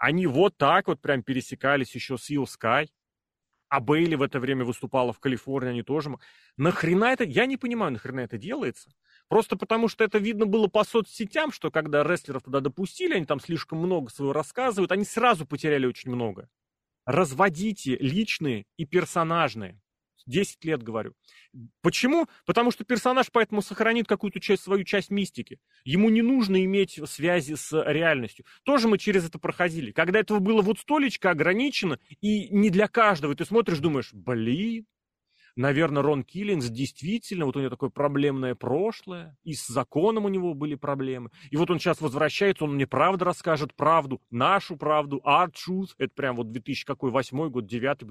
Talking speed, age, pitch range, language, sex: 165 wpm, 30-49, 135-195 Hz, Russian, male